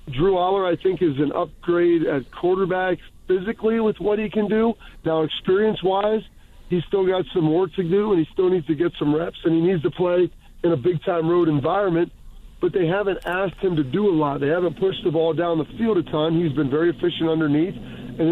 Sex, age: male, 40-59